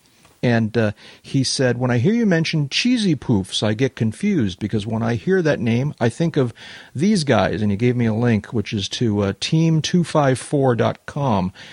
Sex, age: male, 40-59